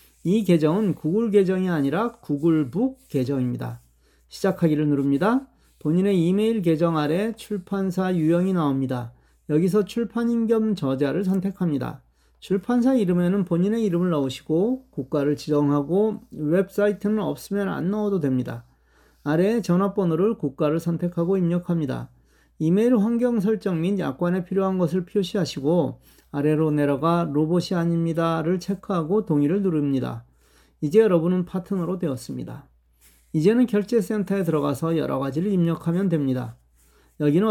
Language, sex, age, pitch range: Korean, male, 40-59, 145-205 Hz